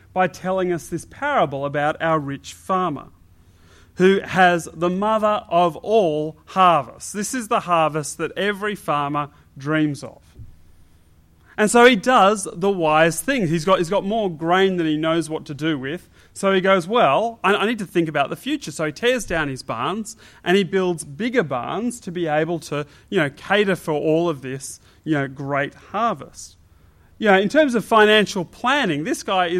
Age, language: 30-49, English